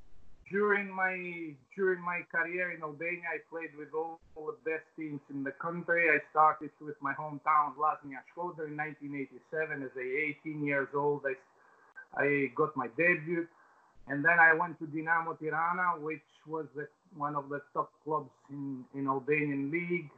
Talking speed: 165 wpm